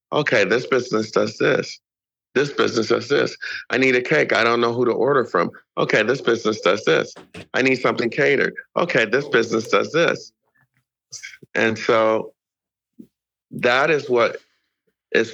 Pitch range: 110-145 Hz